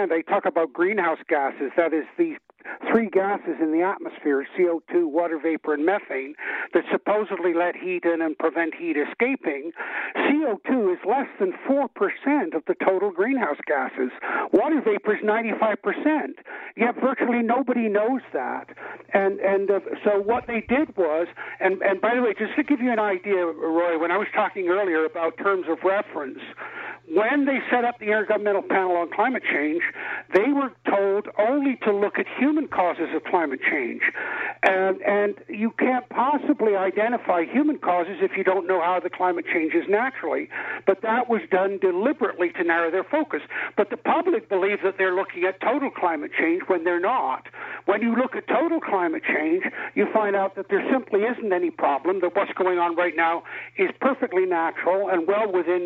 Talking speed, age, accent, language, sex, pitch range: 180 wpm, 60-79, American, English, male, 180-245 Hz